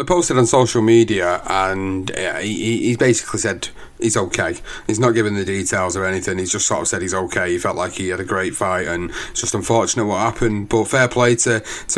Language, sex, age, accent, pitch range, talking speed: English, male, 30-49, British, 110-130 Hz, 225 wpm